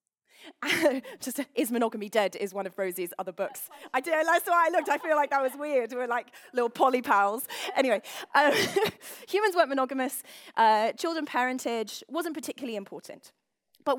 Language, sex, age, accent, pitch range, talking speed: English, female, 20-39, British, 215-300 Hz, 165 wpm